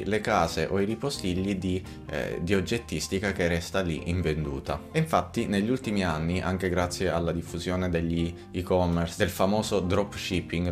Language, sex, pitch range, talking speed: Italian, male, 85-110 Hz, 155 wpm